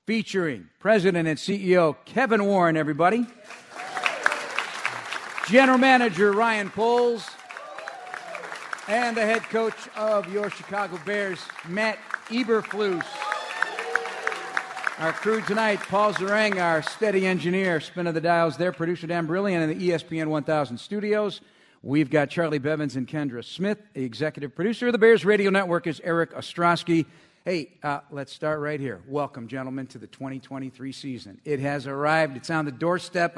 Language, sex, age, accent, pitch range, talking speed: English, male, 50-69, American, 150-195 Hz, 140 wpm